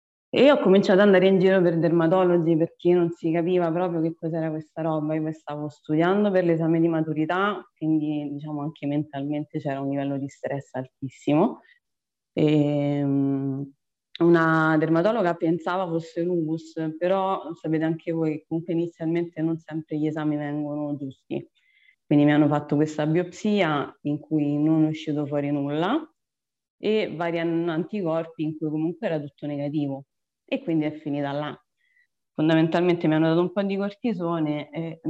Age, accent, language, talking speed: 20-39, native, Italian, 155 wpm